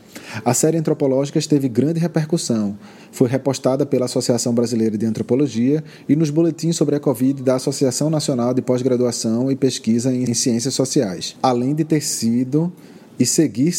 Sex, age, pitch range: male, 20-39, 120-150 Hz